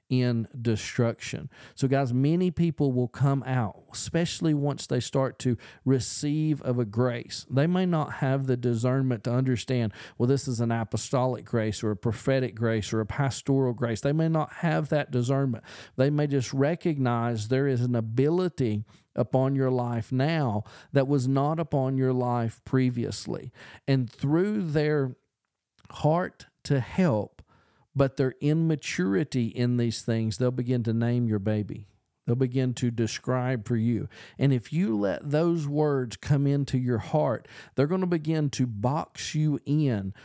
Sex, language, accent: male, English, American